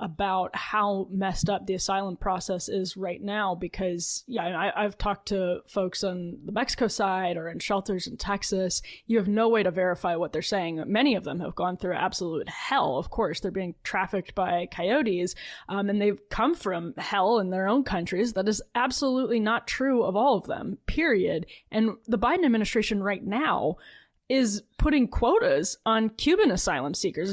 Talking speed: 180 wpm